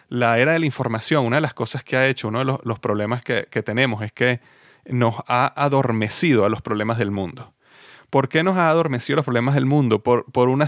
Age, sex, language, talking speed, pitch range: 30-49, male, Spanish, 240 wpm, 125-155 Hz